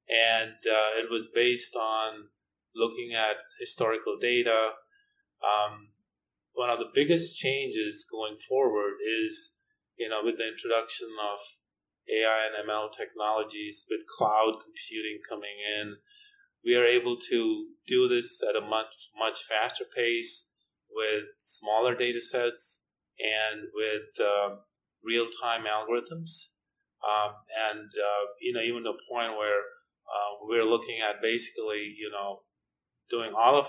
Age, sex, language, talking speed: 30-49, male, English, 135 wpm